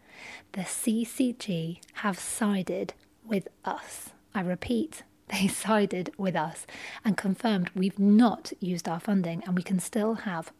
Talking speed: 135 wpm